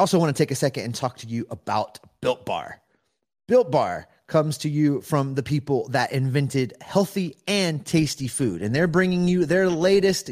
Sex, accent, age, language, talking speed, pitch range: male, American, 30-49, English, 190 wpm, 105-145 Hz